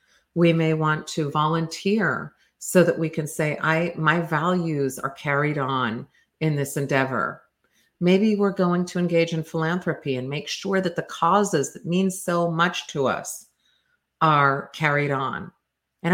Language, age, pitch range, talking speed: English, 50-69, 150-180 Hz, 155 wpm